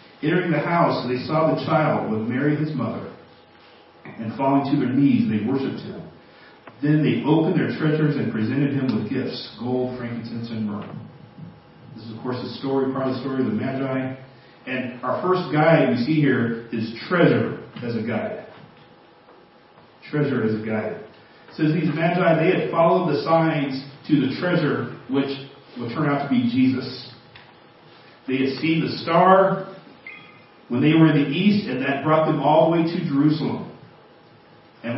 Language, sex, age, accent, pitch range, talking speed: English, male, 40-59, American, 135-180 Hz, 175 wpm